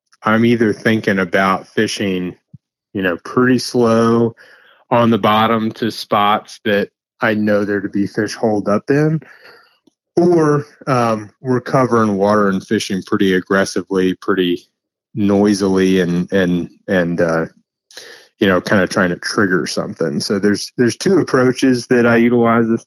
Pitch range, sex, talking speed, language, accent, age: 95-115 Hz, male, 145 wpm, English, American, 30-49